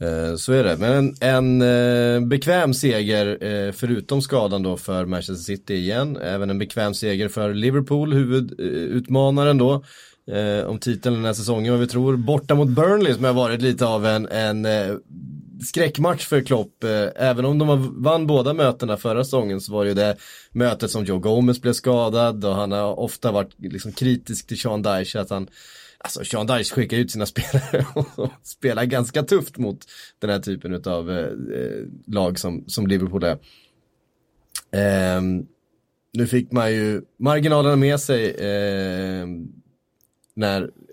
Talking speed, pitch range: 165 wpm, 100-130 Hz